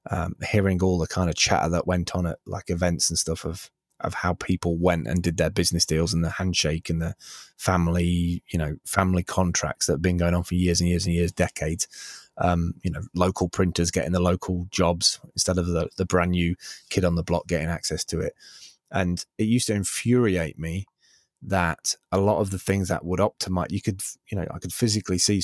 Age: 20-39